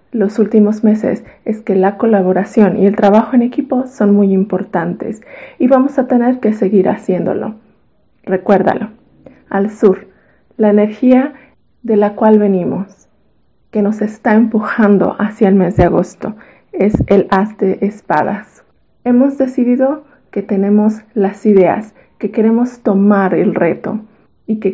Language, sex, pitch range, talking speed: Spanish, female, 200-235 Hz, 140 wpm